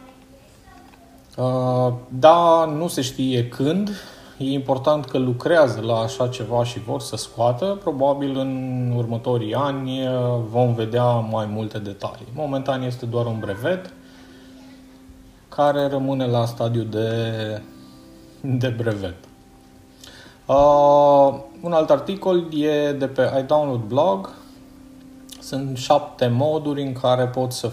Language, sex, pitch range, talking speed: Romanian, male, 100-135 Hz, 110 wpm